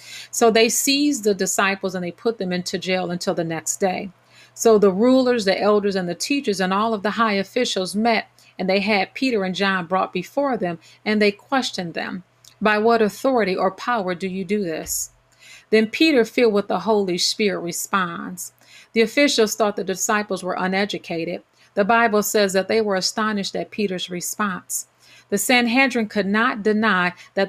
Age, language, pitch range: 40-59, English, 185-225 Hz